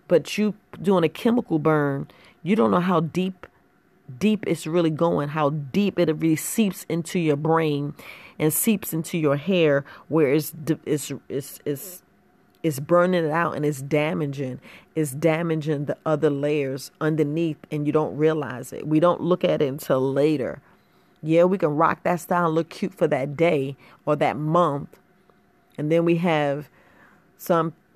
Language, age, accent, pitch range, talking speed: English, 40-59, American, 150-180 Hz, 165 wpm